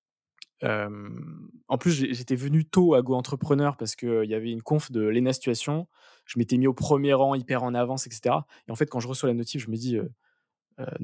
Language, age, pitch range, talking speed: French, 20-39, 115-140 Hz, 230 wpm